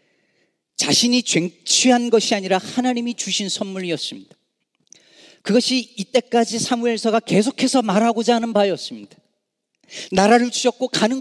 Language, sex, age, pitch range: Korean, male, 40-59, 185-260 Hz